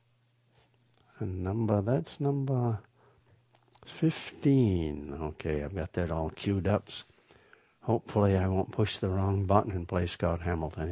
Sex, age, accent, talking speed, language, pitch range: male, 60-79, American, 125 wpm, English, 100-135 Hz